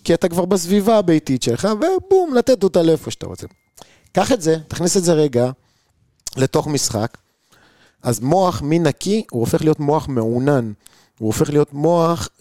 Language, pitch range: Hebrew, 125-170 Hz